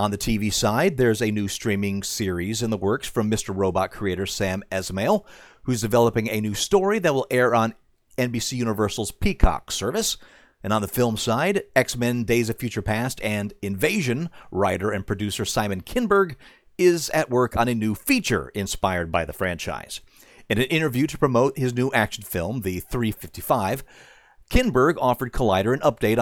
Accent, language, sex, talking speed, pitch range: American, English, male, 170 wpm, 105-150 Hz